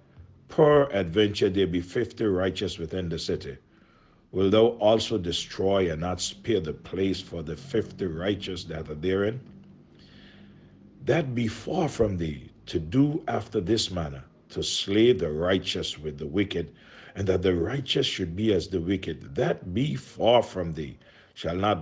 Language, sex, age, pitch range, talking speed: English, male, 50-69, 85-110 Hz, 160 wpm